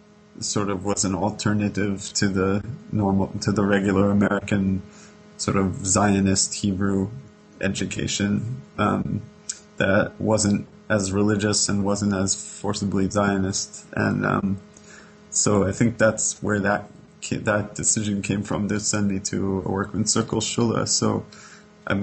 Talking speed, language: 135 wpm, English